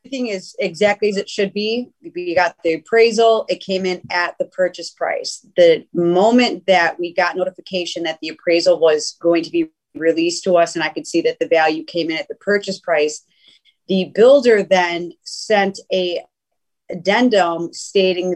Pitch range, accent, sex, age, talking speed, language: 170-200 Hz, American, female, 30-49, 175 wpm, English